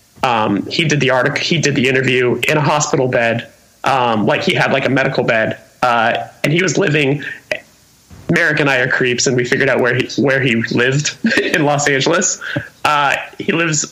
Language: English